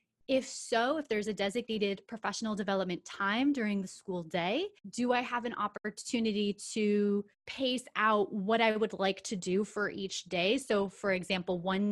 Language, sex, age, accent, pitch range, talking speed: English, female, 20-39, American, 190-235 Hz, 170 wpm